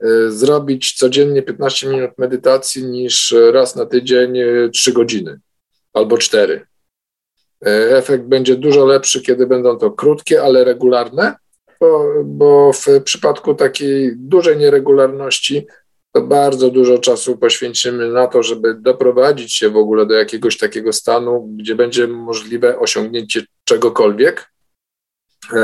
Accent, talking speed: native, 120 wpm